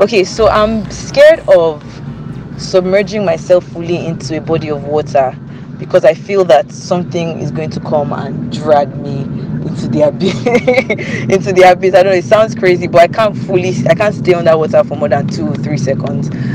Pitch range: 140-170 Hz